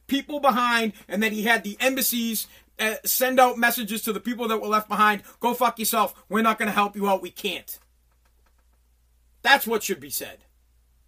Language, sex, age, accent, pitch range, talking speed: English, male, 40-59, American, 205-275 Hz, 195 wpm